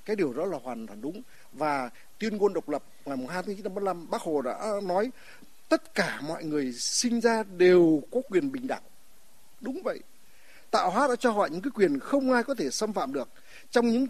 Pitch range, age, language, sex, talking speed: 185-250 Hz, 60-79, Vietnamese, male, 215 wpm